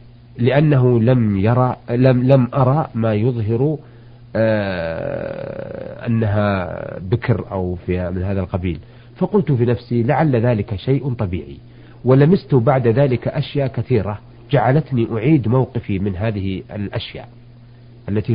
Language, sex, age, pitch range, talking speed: Arabic, male, 50-69, 115-135 Hz, 115 wpm